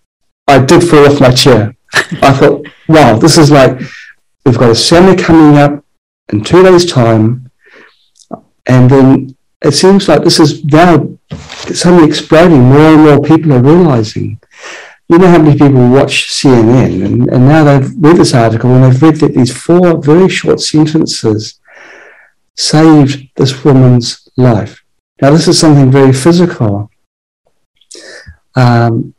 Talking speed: 150 wpm